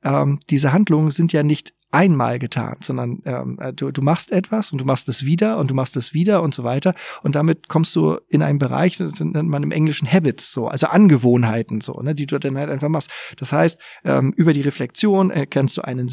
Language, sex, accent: German, male, German